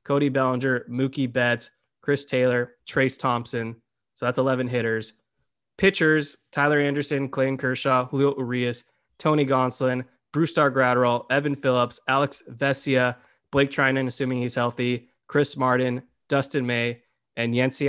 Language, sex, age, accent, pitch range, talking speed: English, male, 20-39, American, 130-150 Hz, 130 wpm